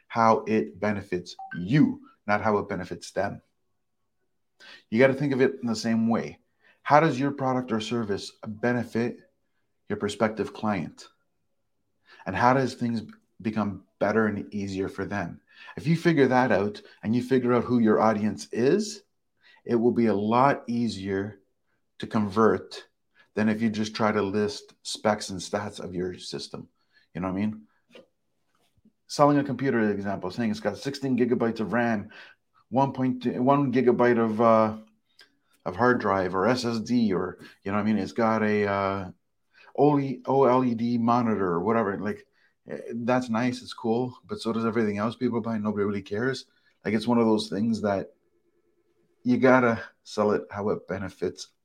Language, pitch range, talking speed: English, 105-125 Hz, 170 wpm